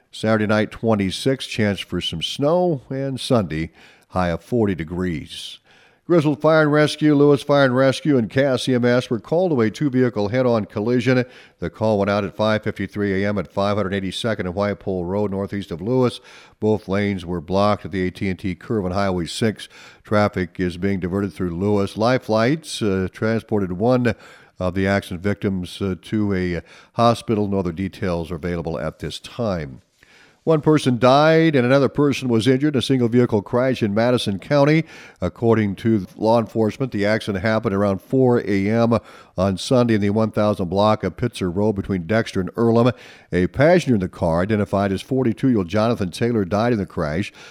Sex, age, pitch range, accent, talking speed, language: male, 50-69, 95-125 Hz, American, 175 wpm, English